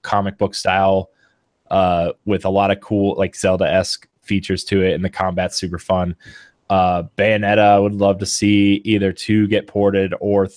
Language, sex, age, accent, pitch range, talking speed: English, male, 20-39, American, 100-115 Hz, 175 wpm